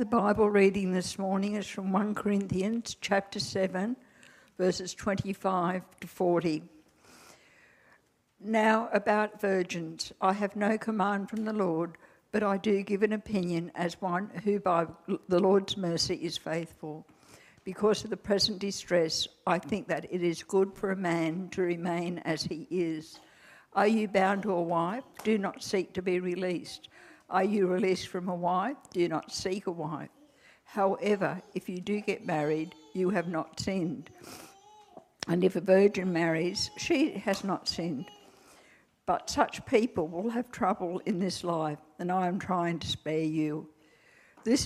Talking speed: 160 wpm